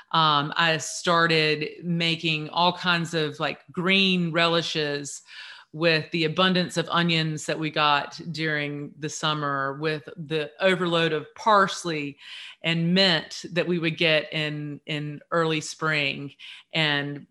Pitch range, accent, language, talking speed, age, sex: 155-175 Hz, American, English, 130 wpm, 30-49, female